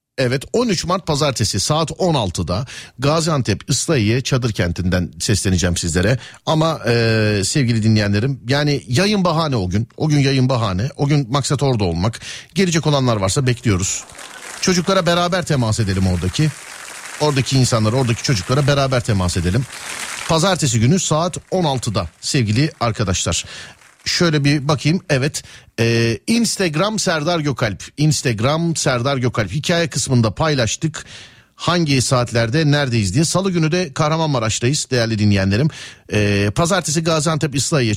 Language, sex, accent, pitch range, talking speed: Turkish, male, native, 115-165 Hz, 125 wpm